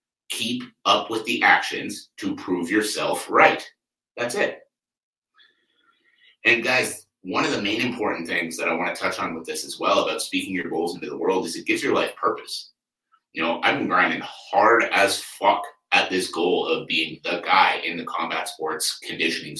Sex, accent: male, American